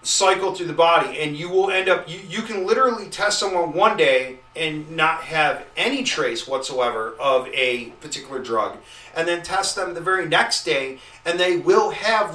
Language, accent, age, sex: English, American, 40-59, male